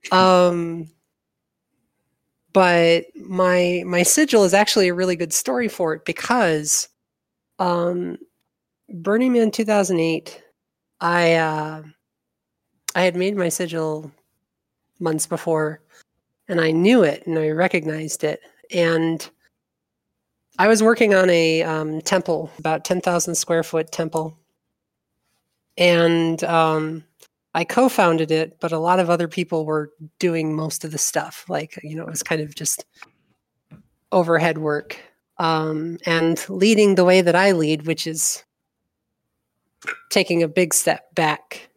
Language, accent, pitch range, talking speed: English, American, 160-185 Hz, 130 wpm